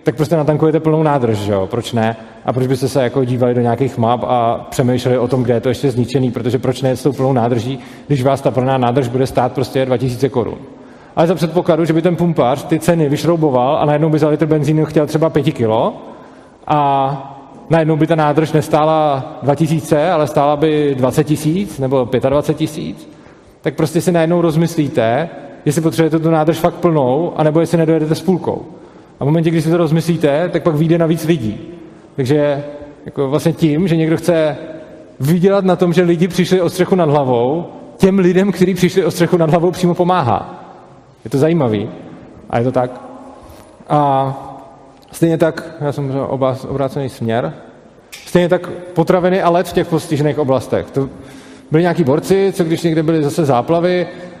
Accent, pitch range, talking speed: native, 135-165 Hz, 185 wpm